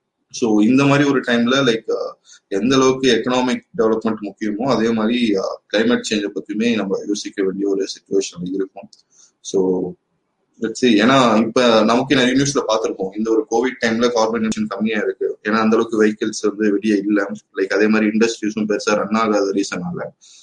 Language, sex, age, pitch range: Tamil, male, 20-39, 100-120 Hz